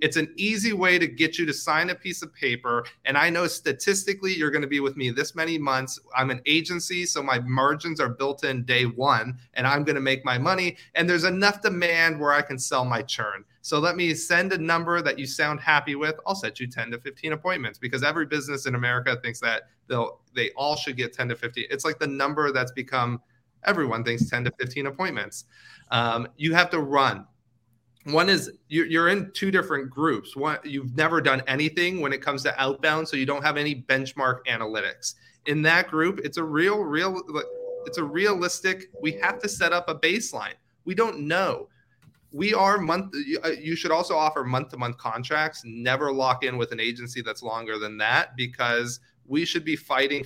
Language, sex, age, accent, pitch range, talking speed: English, male, 40-59, American, 125-170 Hz, 205 wpm